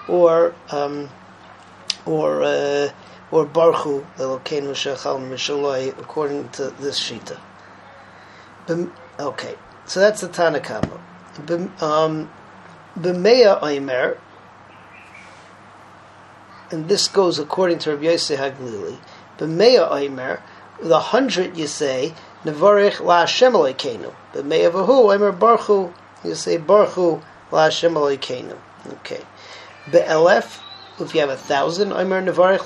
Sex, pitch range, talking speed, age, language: male, 155-205 Hz, 110 wpm, 40-59, English